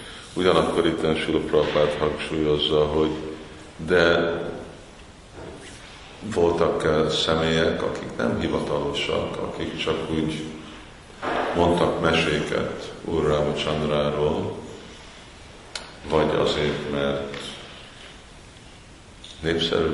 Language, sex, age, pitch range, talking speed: Hungarian, male, 50-69, 75-80 Hz, 65 wpm